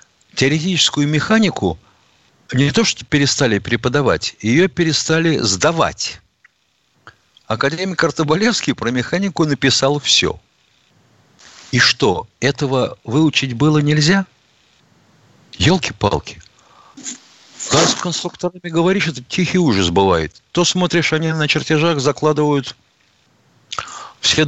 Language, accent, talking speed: Russian, native, 95 wpm